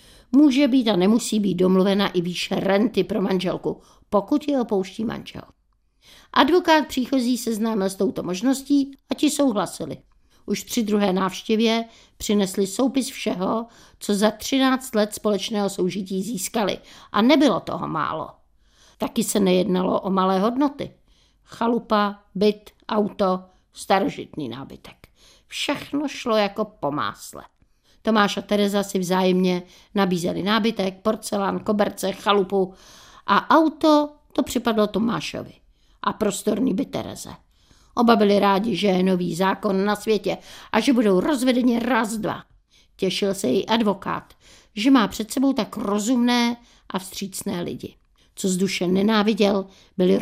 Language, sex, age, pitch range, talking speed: Czech, female, 50-69, 195-235 Hz, 130 wpm